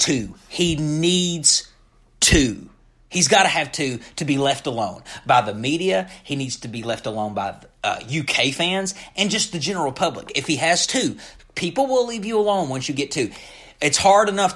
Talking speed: 195 wpm